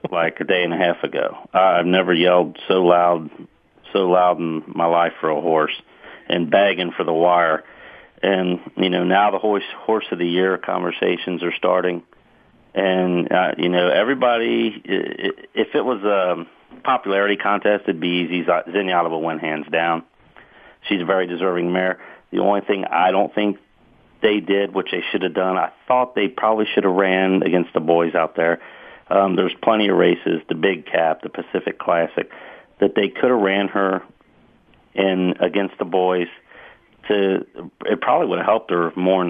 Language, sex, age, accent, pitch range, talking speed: English, male, 40-59, American, 85-100 Hz, 175 wpm